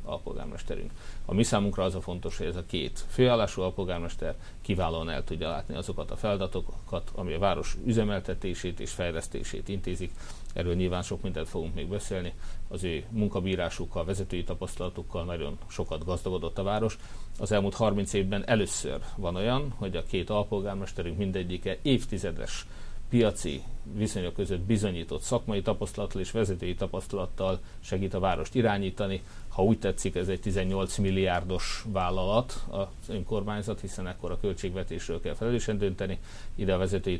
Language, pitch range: Hungarian, 90-105 Hz